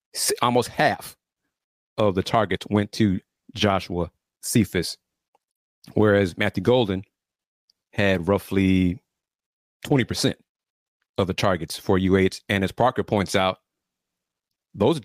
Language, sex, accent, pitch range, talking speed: English, male, American, 95-125 Hz, 105 wpm